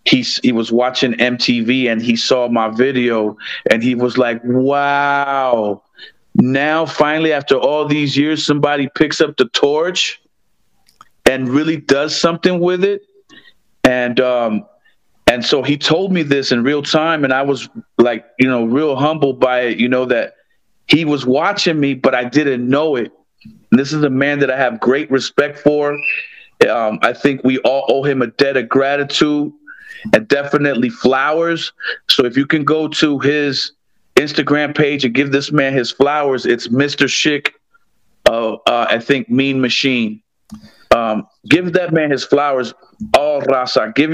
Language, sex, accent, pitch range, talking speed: English, male, American, 130-155 Hz, 170 wpm